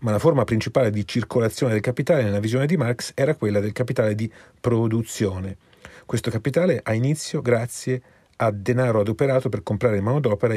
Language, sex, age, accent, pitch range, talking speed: Italian, male, 40-59, native, 105-135 Hz, 165 wpm